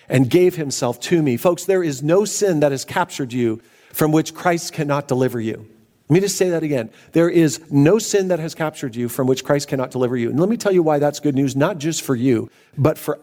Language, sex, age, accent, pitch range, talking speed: English, male, 50-69, American, 135-170 Hz, 250 wpm